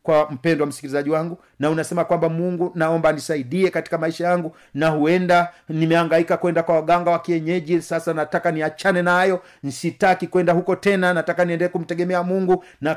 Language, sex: Swahili, male